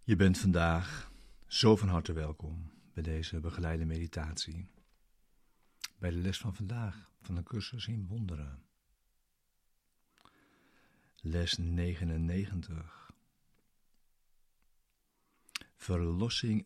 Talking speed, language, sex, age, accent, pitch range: 85 wpm, Dutch, male, 60-79, Dutch, 85-105 Hz